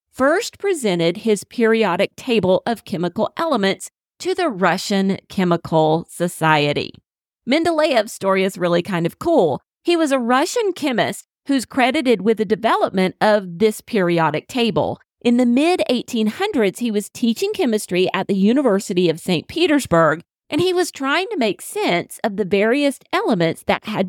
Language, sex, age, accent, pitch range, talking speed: English, female, 40-59, American, 185-265 Hz, 150 wpm